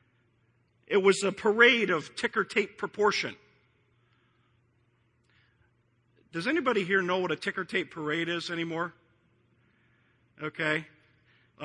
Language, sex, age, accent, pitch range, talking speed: English, male, 50-69, American, 130-200 Hz, 110 wpm